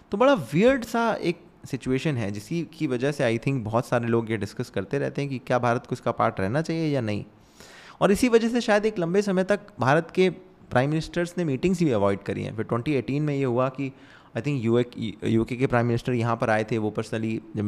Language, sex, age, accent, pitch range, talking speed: Hindi, male, 20-39, native, 115-160 Hz, 240 wpm